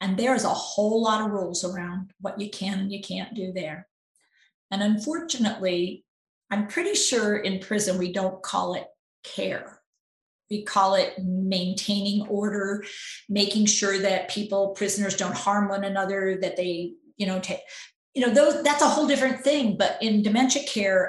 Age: 40-59